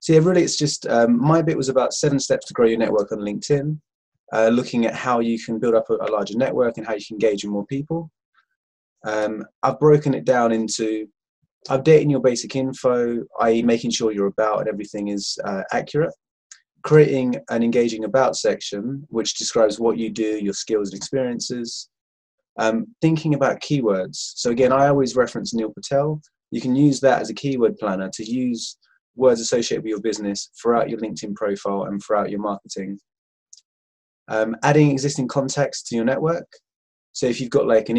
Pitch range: 110-135 Hz